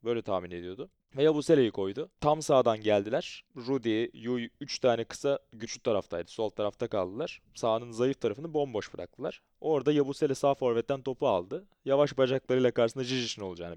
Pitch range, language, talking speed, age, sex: 95-125 Hz, Turkish, 155 wpm, 30-49, male